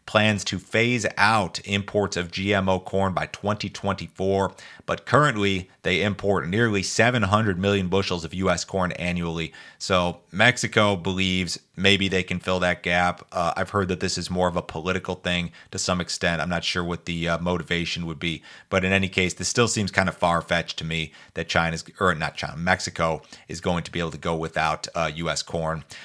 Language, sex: English, male